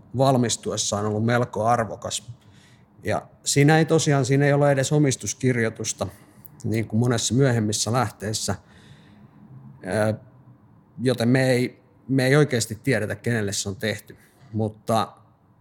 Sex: male